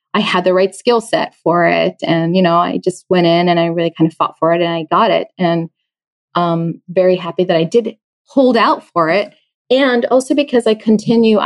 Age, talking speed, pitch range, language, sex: 20-39, 225 wpm, 165-195 Hz, English, female